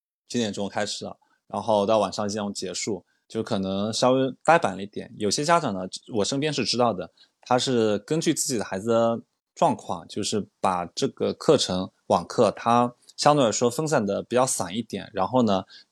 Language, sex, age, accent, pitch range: Chinese, male, 20-39, native, 100-125 Hz